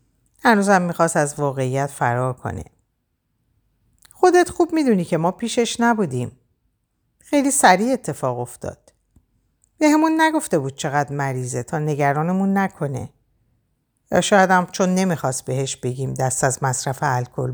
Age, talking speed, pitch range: 50-69, 120 wpm, 135-225 Hz